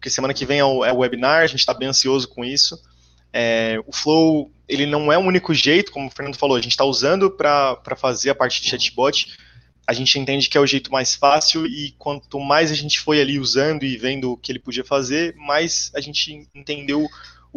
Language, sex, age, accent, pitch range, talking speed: Portuguese, male, 20-39, Brazilian, 120-150 Hz, 220 wpm